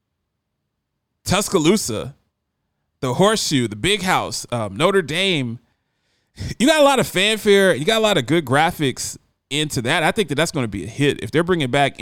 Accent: American